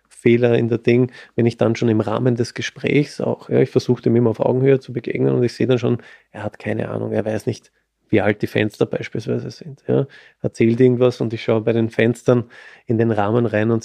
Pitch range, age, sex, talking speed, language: 115-130 Hz, 20-39, male, 240 wpm, German